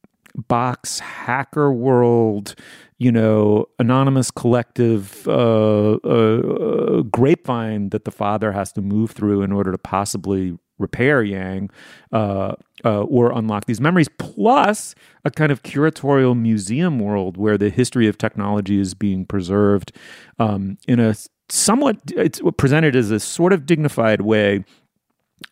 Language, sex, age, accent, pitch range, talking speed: English, male, 40-59, American, 100-130 Hz, 130 wpm